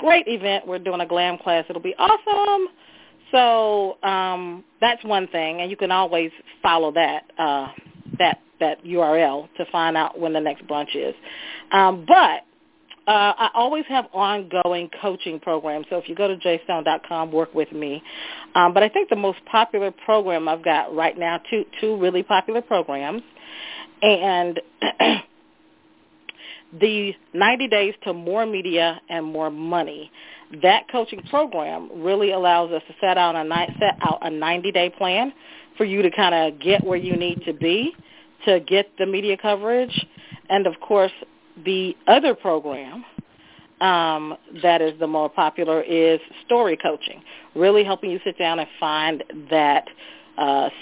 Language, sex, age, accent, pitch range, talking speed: English, female, 40-59, American, 165-210 Hz, 155 wpm